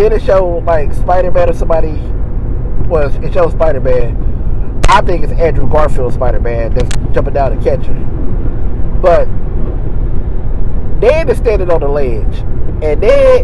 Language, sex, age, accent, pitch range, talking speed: English, male, 20-39, American, 125-200 Hz, 145 wpm